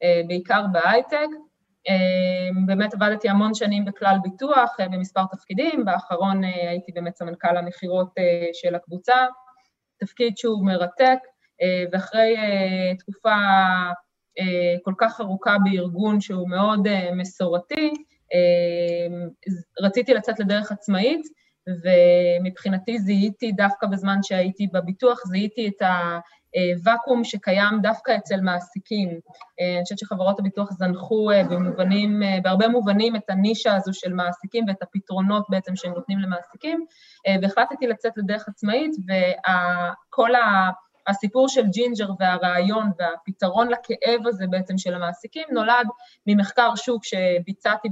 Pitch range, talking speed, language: 185-225 Hz, 105 wpm, Hebrew